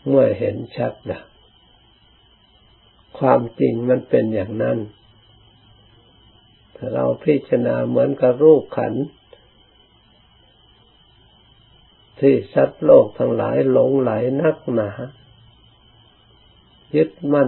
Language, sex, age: Thai, male, 60-79